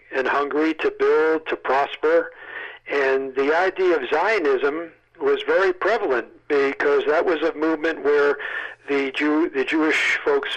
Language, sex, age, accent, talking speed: English, male, 50-69, American, 140 wpm